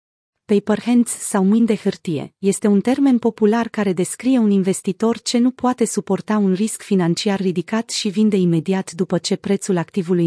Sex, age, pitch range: female, 30-49, 180-225 Hz